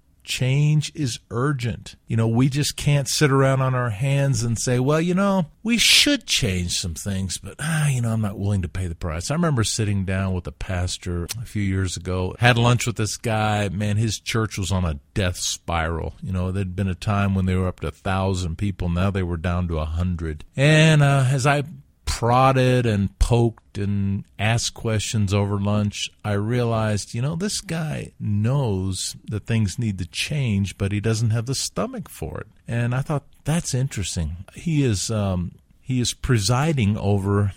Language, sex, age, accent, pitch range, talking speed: English, male, 50-69, American, 95-135 Hz, 195 wpm